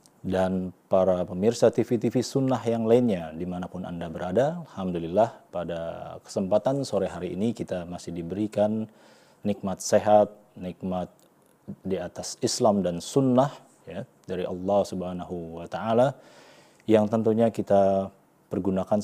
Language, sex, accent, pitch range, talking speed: Indonesian, male, native, 90-115 Hz, 120 wpm